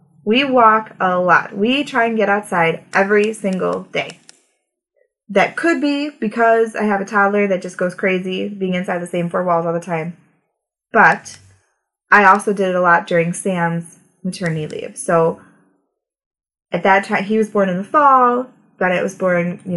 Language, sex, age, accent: English, female, 20-39, American